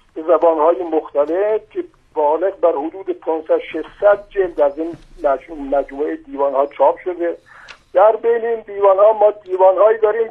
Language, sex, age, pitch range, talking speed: Persian, male, 50-69, 160-205 Hz, 140 wpm